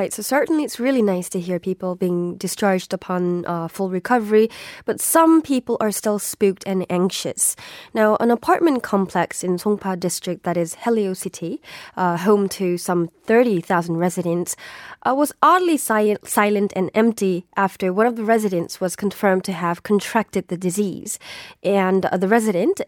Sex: female